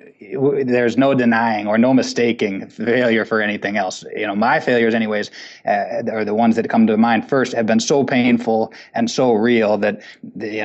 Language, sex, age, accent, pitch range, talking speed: English, male, 20-39, American, 110-125 Hz, 185 wpm